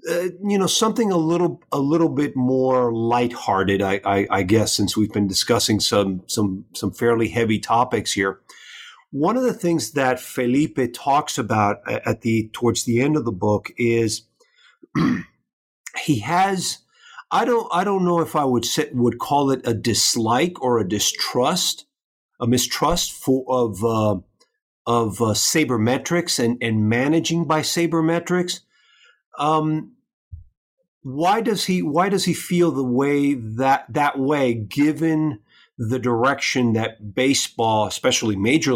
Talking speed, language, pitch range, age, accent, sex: 145 wpm, English, 110-155 Hz, 50-69, American, male